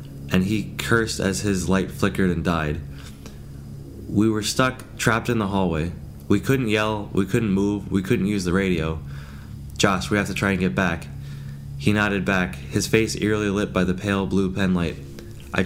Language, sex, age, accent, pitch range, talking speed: English, male, 20-39, American, 85-105 Hz, 185 wpm